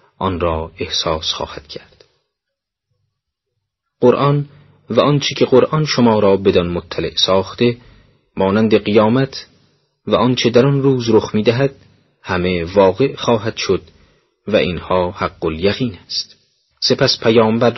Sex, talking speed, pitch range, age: male, 120 wpm, 95-120 Hz, 30-49